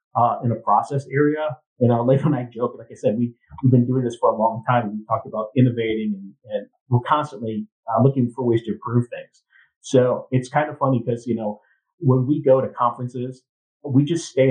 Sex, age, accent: male, 40-59, American